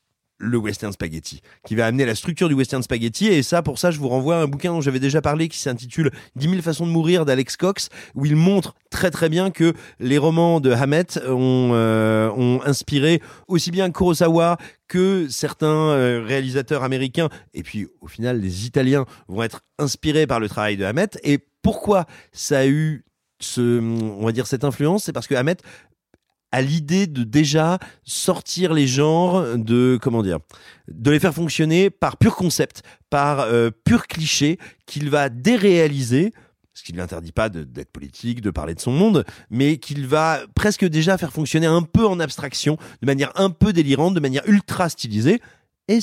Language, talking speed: French, 190 wpm